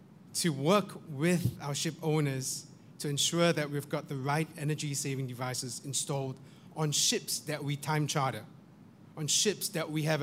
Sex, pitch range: male, 140-170 Hz